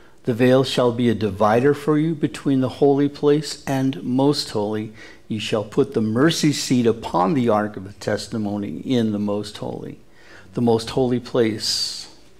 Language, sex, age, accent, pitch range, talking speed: English, male, 60-79, American, 110-145 Hz, 170 wpm